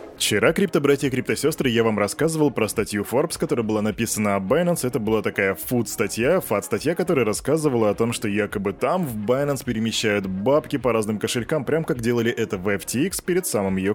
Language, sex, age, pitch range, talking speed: Russian, male, 20-39, 110-160 Hz, 185 wpm